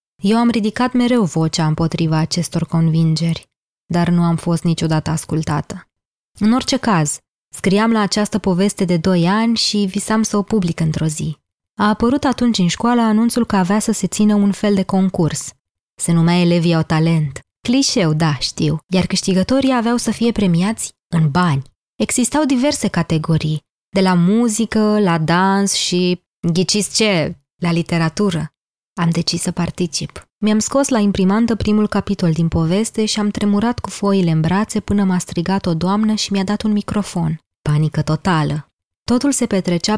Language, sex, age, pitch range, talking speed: Romanian, female, 20-39, 160-210 Hz, 165 wpm